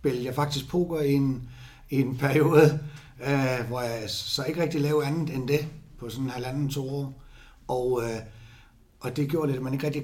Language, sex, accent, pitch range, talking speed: Danish, male, native, 115-145 Hz, 205 wpm